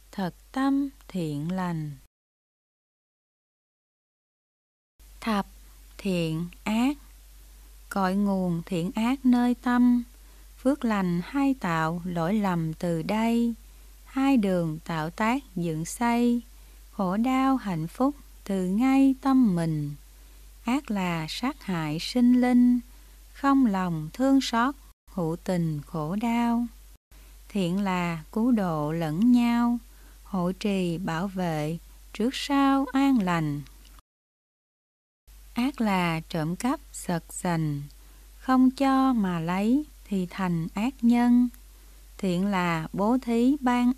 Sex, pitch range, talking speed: female, 165-245 Hz, 110 wpm